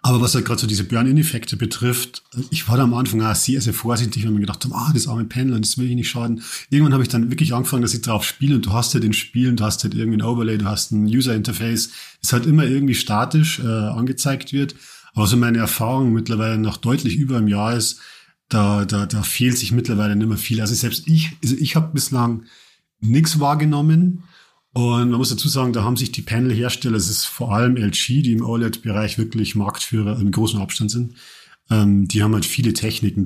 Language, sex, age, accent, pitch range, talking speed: German, male, 40-59, German, 105-125 Hz, 225 wpm